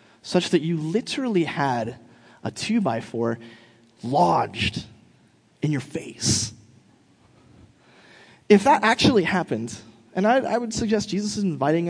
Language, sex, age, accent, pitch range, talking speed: English, male, 20-39, American, 170-230 Hz, 115 wpm